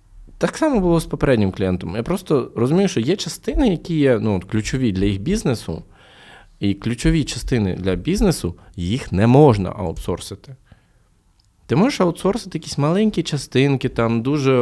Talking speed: 150 wpm